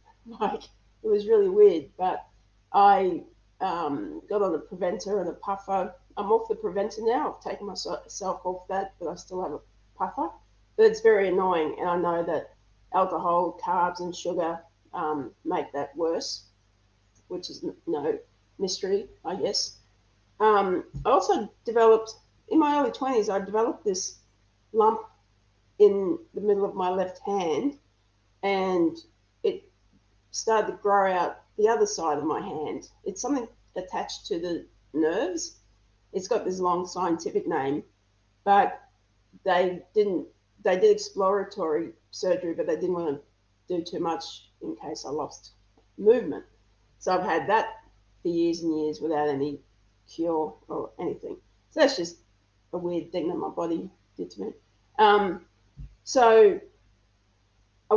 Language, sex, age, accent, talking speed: English, female, 40-59, Australian, 150 wpm